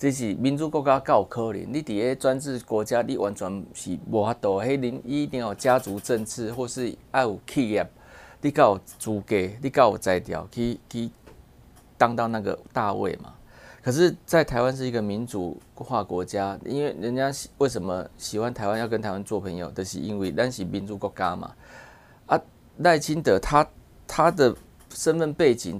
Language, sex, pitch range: Chinese, male, 105-135 Hz